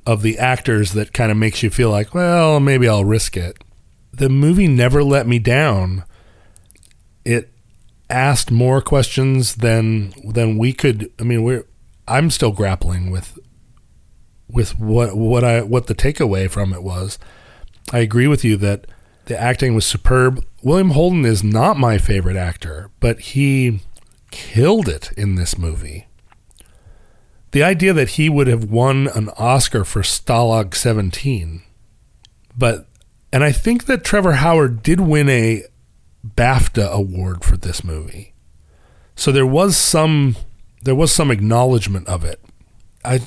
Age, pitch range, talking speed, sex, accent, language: 40-59, 100-130 Hz, 150 wpm, male, American, English